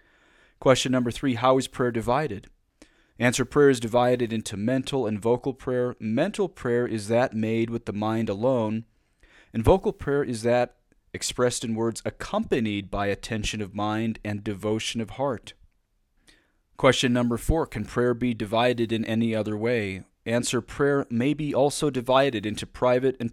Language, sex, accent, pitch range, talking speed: English, male, American, 110-130 Hz, 160 wpm